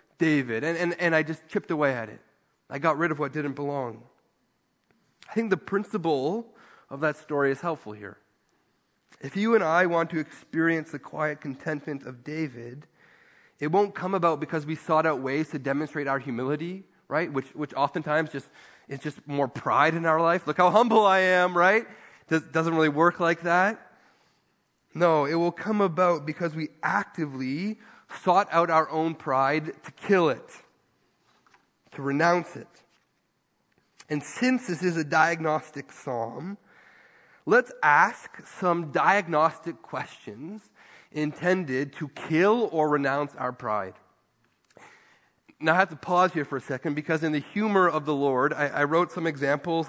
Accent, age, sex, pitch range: American, 30-49, male, 145-175 Hz